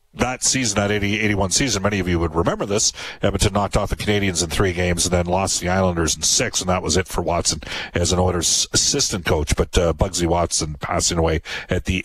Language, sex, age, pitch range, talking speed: English, male, 50-69, 90-115 Hz, 225 wpm